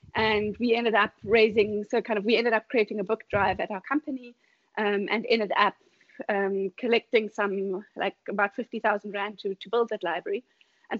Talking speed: 195 wpm